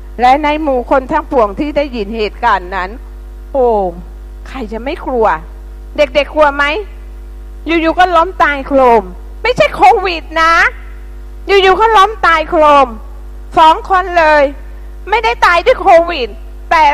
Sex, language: female, Thai